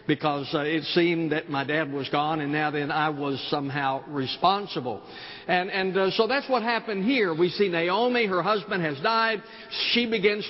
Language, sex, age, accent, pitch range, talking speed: English, male, 60-79, American, 150-200 Hz, 190 wpm